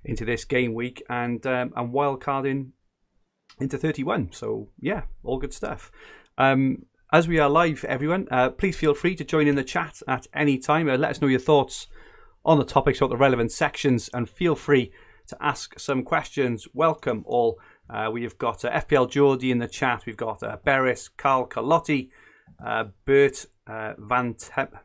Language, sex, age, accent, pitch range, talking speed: English, male, 30-49, British, 110-140 Hz, 180 wpm